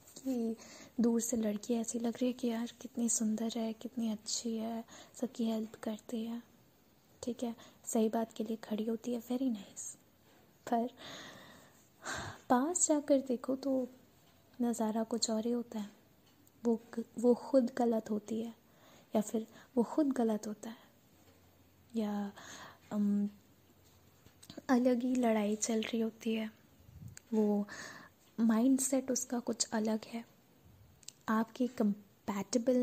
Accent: native